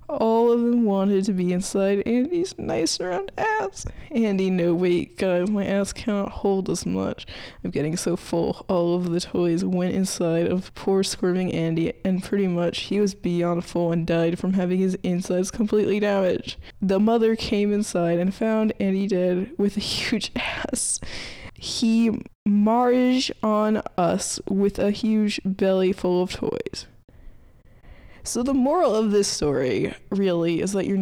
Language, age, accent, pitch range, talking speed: English, 20-39, American, 180-220 Hz, 165 wpm